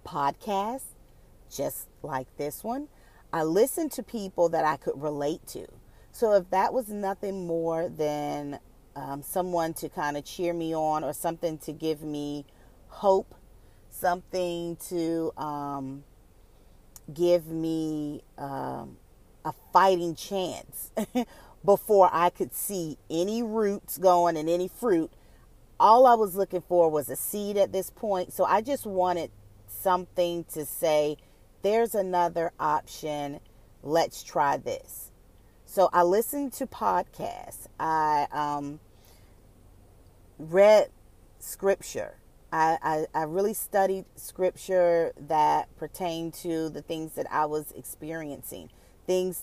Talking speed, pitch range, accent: 125 wpm, 150-185 Hz, American